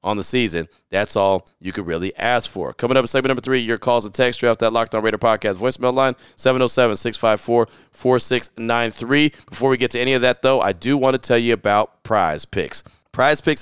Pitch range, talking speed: 110-135 Hz, 220 wpm